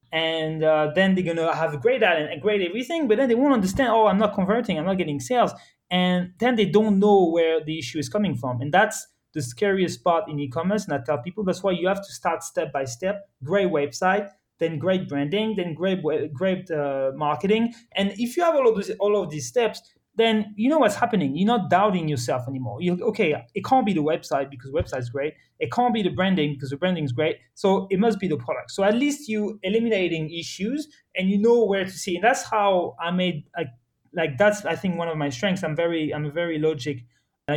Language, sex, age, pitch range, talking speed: English, male, 30-49, 150-200 Hz, 235 wpm